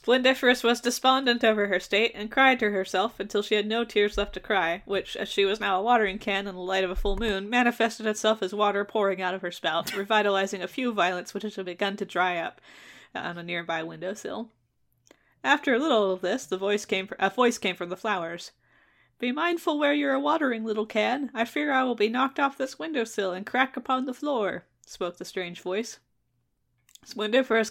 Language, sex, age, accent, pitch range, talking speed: English, female, 10-29, American, 185-235 Hz, 205 wpm